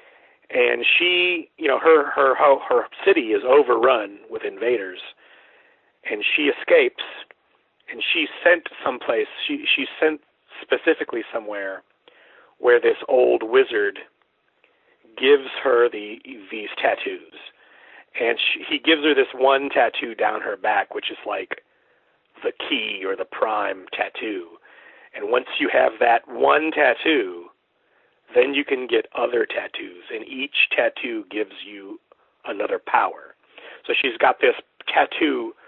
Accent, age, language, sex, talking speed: American, 40-59, English, male, 135 wpm